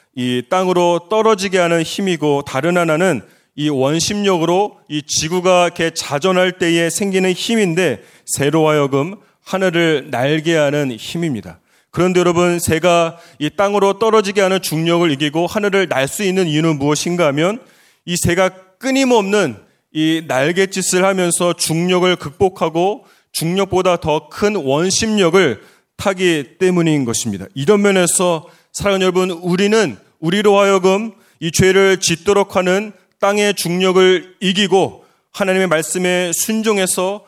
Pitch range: 155-190 Hz